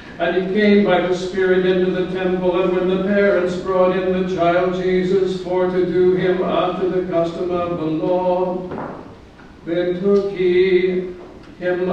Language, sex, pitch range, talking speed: English, male, 180-185 Hz, 160 wpm